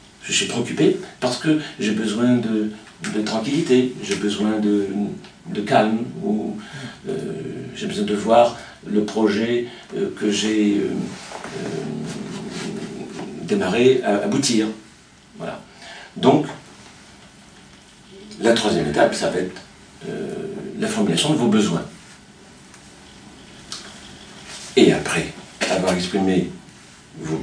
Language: French